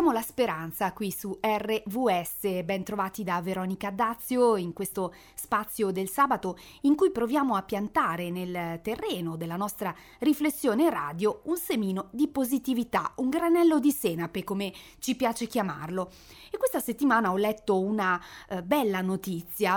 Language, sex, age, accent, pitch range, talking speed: Italian, female, 30-49, native, 185-260 Hz, 145 wpm